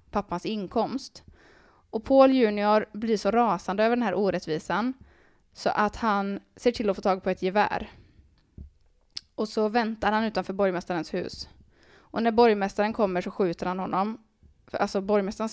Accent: native